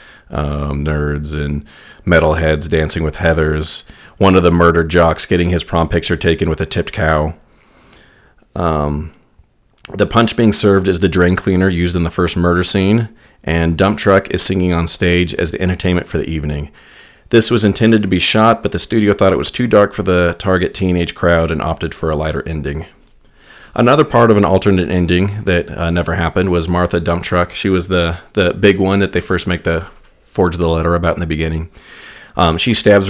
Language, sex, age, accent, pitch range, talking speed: English, male, 40-59, American, 80-100 Hz, 200 wpm